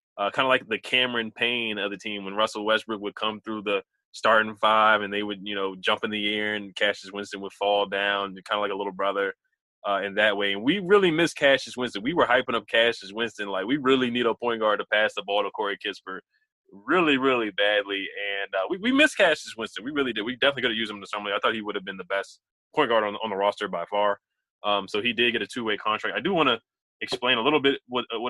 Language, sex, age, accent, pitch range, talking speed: English, male, 20-39, American, 100-120 Hz, 265 wpm